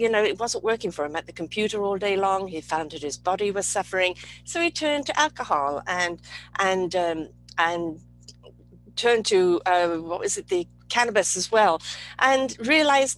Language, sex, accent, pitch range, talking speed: English, female, British, 165-235 Hz, 185 wpm